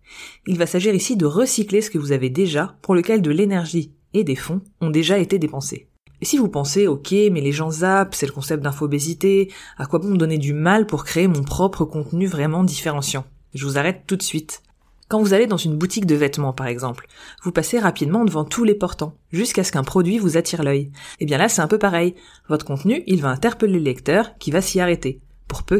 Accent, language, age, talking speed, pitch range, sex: French, French, 30-49, 230 wpm, 145-200 Hz, female